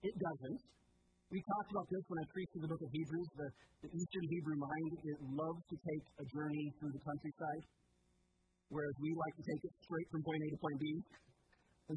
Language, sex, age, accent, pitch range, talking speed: English, male, 30-49, American, 140-190 Hz, 210 wpm